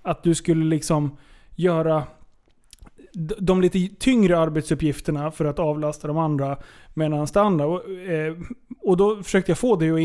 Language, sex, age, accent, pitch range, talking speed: English, male, 30-49, Swedish, 150-190 Hz, 155 wpm